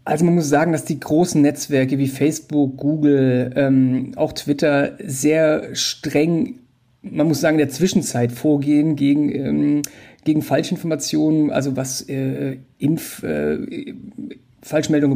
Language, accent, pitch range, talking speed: German, German, 140-170 Hz, 125 wpm